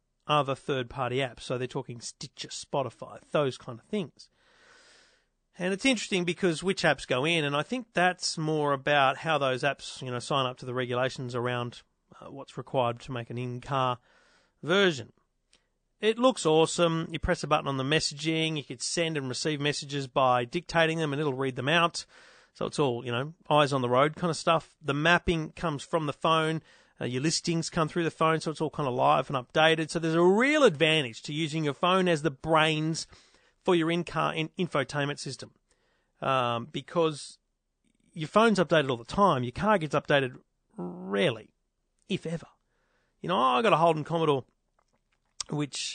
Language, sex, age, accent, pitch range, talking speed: English, male, 40-59, Australian, 135-170 Hz, 190 wpm